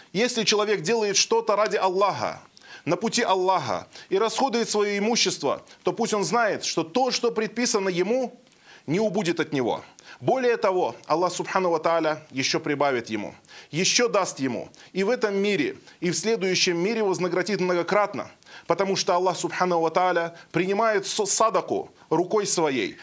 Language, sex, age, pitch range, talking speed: Russian, male, 20-39, 170-210 Hz, 145 wpm